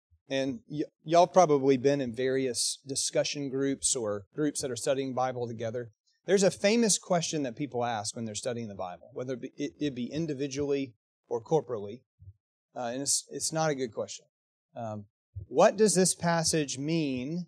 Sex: male